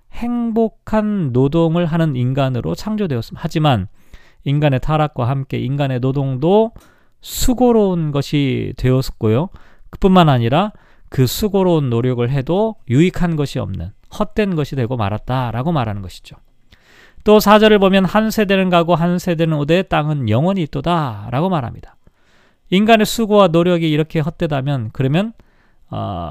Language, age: Korean, 40-59